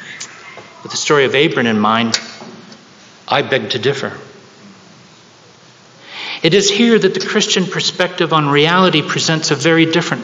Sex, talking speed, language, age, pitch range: male, 140 wpm, English, 50-69, 140-185 Hz